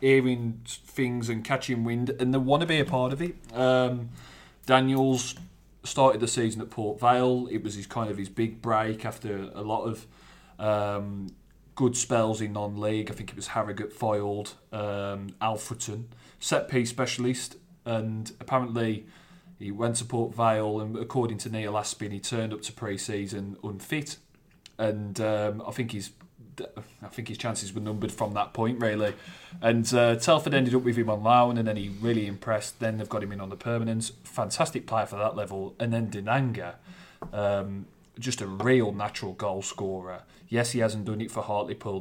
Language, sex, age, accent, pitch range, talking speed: English, male, 30-49, British, 100-120 Hz, 180 wpm